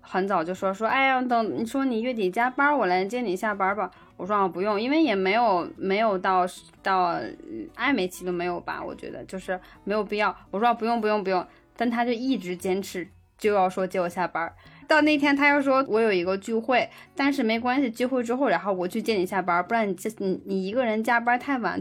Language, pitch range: Chinese, 195-275 Hz